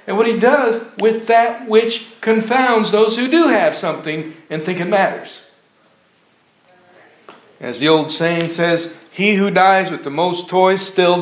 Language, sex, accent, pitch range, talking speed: English, male, American, 145-220 Hz, 160 wpm